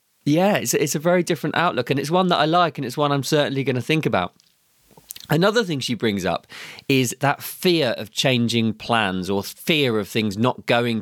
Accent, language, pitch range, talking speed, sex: British, English, 105-150 Hz, 205 wpm, male